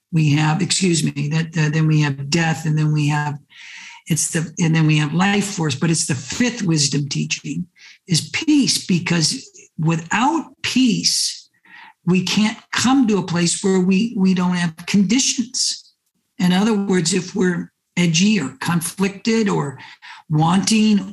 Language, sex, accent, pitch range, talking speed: English, male, American, 155-200 Hz, 155 wpm